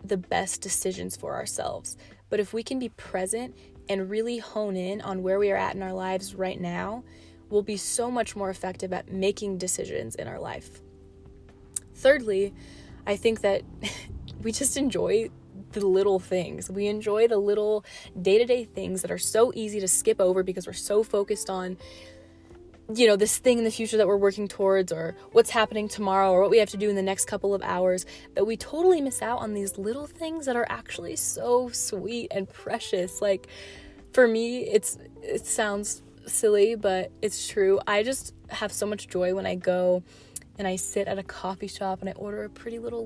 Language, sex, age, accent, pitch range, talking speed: English, female, 20-39, American, 185-225 Hz, 195 wpm